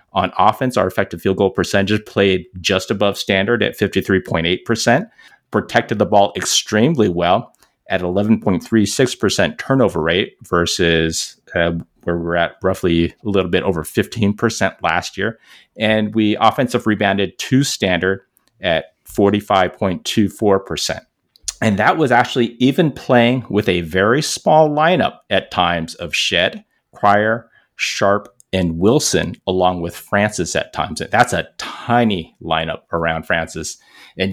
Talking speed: 130 wpm